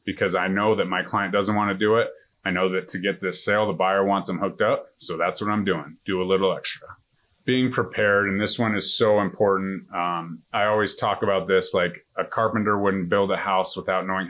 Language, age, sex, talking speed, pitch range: English, 30-49, male, 235 wpm, 95-105 Hz